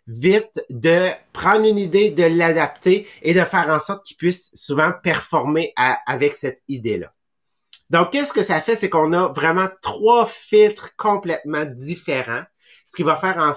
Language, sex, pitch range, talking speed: English, male, 145-190 Hz, 170 wpm